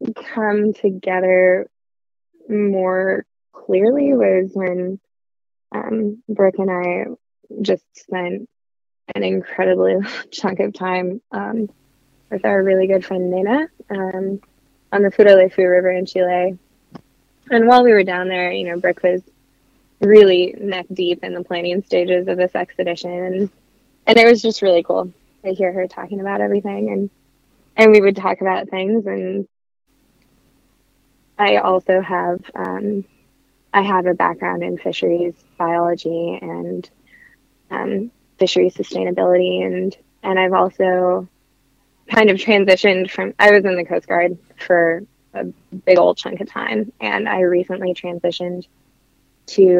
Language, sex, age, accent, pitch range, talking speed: English, female, 20-39, American, 175-200 Hz, 135 wpm